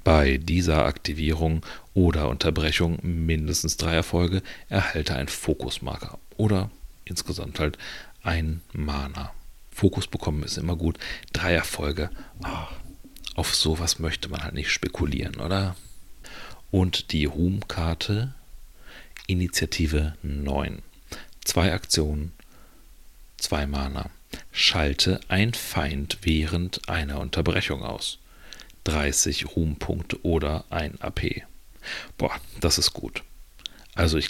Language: German